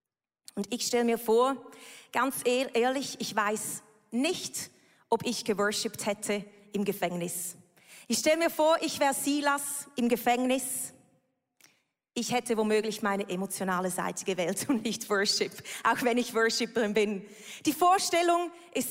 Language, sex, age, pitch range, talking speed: German, female, 30-49, 235-320 Hz, 135 wpm